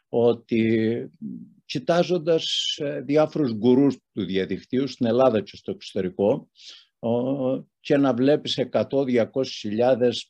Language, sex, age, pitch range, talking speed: Greek, male, 60-79, 105-145 Hz, 85 wpm